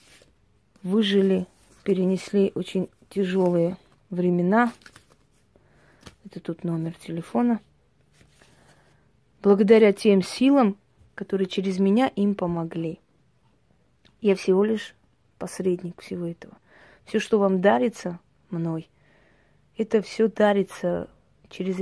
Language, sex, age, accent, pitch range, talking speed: Russian, female, 30-49, native, 175-205 Hz, 90 wpm